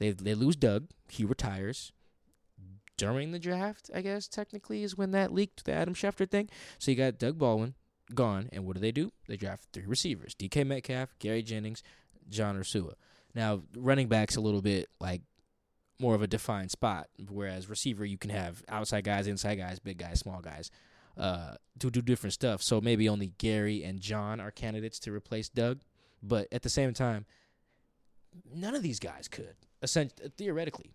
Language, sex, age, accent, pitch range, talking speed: English, male, 20-39, American, 100-130 Hz, 180 wpm